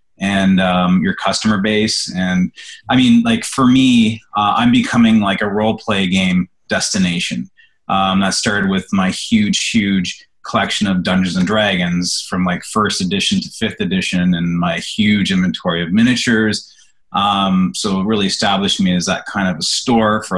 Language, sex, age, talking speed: English, male, 30-49, 170 wpm